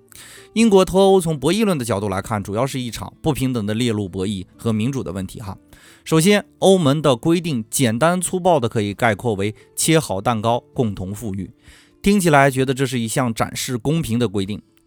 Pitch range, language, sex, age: 110-155 Hz, Chinese, male, 30-49